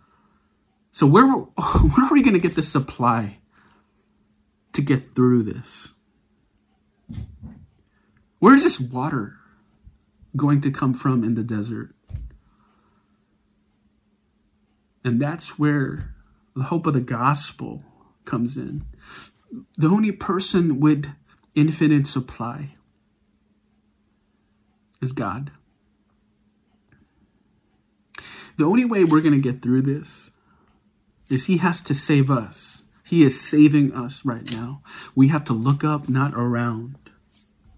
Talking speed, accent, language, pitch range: 115 wpm, American, English, 125-150 Hz